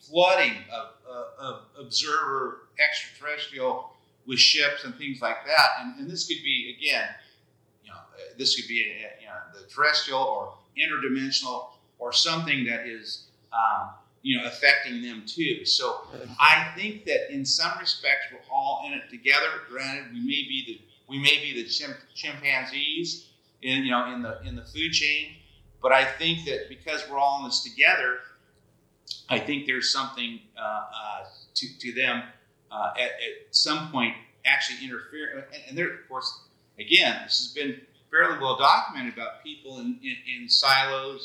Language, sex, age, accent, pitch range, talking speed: English, male, 40-59, American, 125-185 Hz, 165 wpm